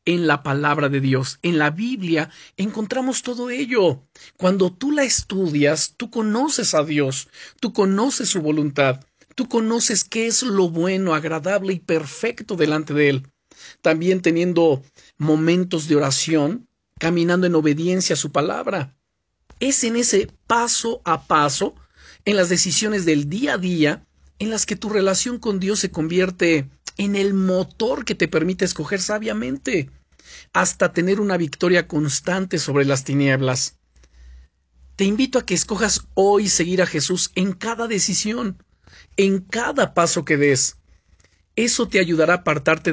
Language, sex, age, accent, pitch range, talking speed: Spanish, male, 50-69, Mexican, 145-200 Hz, 150 wpm